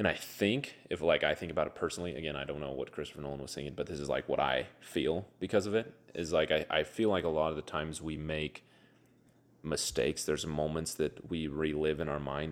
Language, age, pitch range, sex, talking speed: English, 30-49, 75-90 Hz, male, 245 wpm